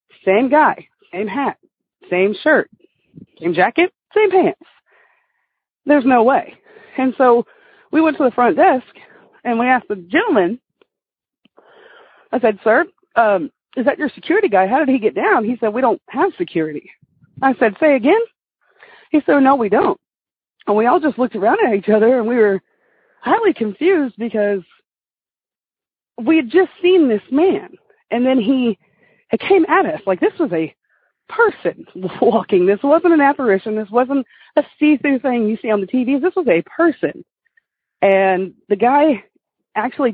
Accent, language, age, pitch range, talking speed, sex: American, English, 40-59, 205-310 Hz, 165 wpm, female